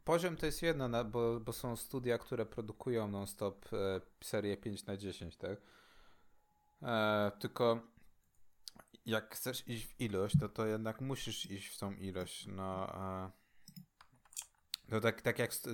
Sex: male